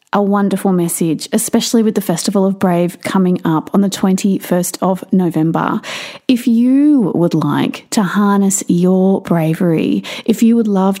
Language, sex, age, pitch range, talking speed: English, female, 30-49, 175-230 Hz, 155 wpm